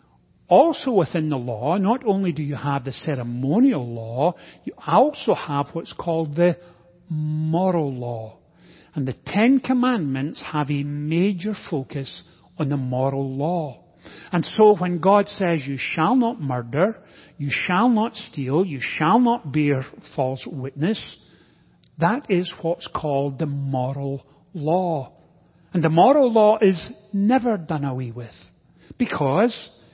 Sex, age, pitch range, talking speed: male, 40-59, 145-195 Hz, 135 wpm